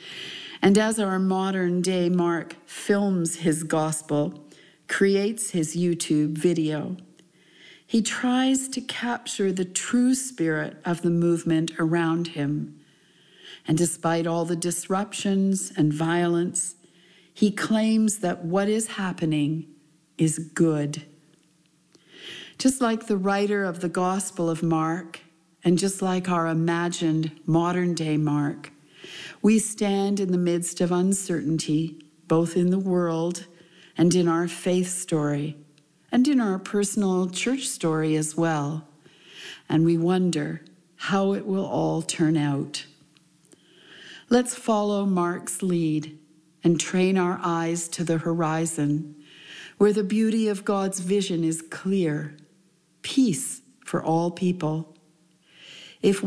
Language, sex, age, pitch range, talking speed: English, female, 50-69, 160-195 Hz, 120 wpm